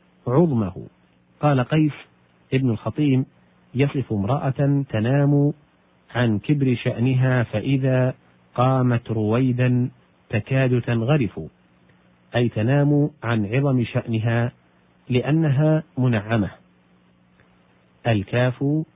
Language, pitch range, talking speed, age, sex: Arabic, 95-130 Hz, 75 wpm, 40-59, male